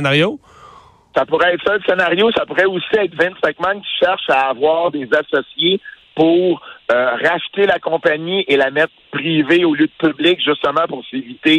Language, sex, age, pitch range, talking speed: French, male, 60-79, 135-190 Hz, 175 wpm